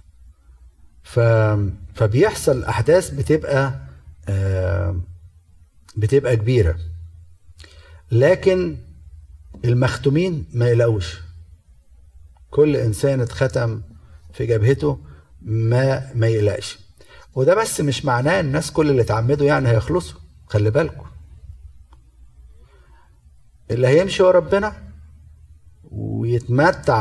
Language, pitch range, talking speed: Arabic, 80-130 Hz, 80 wpm